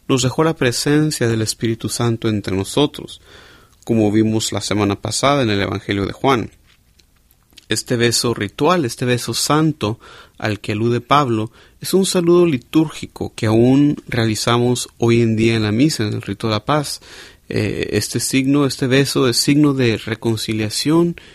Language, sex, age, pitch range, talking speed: Spanish, male, 40-59, 110-140 Hz, 155 wpm